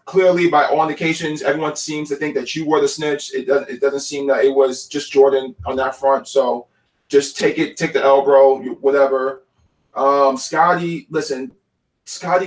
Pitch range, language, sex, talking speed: 135-190 Hz, English, male, 185 wpm